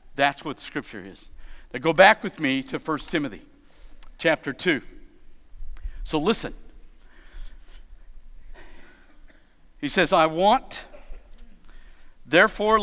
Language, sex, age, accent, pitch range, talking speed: Polish, male, 50-69, American, 155-235 Hz, 105 wpm